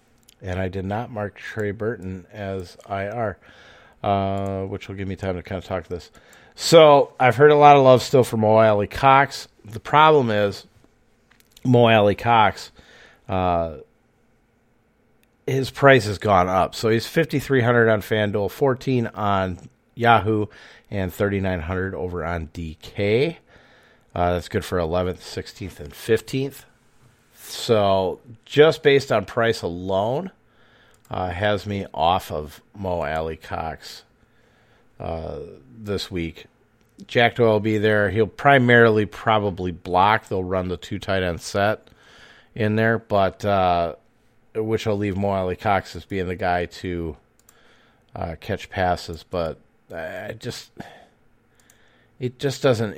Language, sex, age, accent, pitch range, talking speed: English, male, 40-59, American, 95-115 Hz, 145 wpm